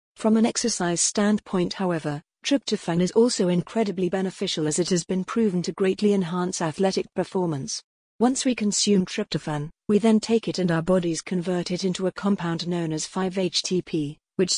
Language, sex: English, female